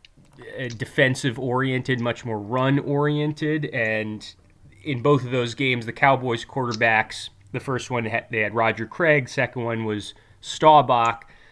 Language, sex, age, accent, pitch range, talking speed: English, male, 20-39, American, 115-145 Hz, 135 wpm